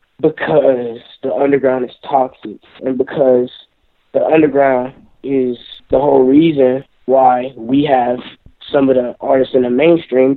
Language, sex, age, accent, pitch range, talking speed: English, male, 20-39, American, 130-150 Hz, 135 wpm